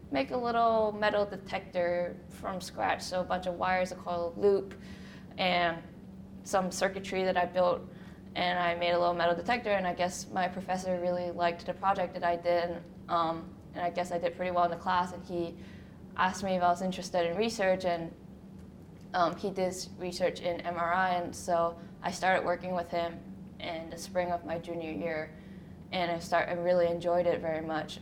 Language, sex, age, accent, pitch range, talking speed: English, female, 10-29, American, 170-185 Hz, 195 wpm